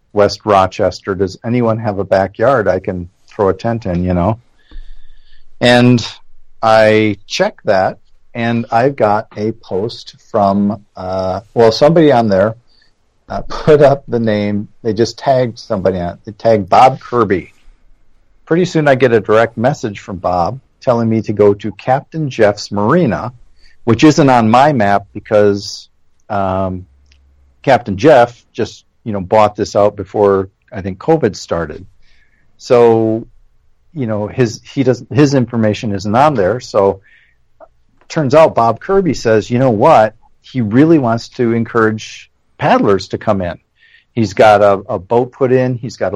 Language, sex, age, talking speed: English, male, 50-69, 155 wpm